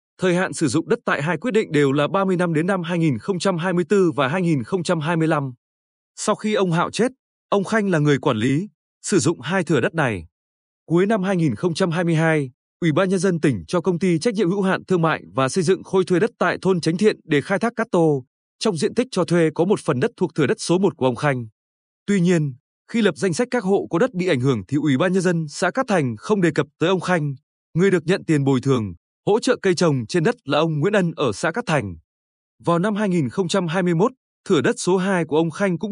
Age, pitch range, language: 20-39, 145-195 Hz, Vietnamese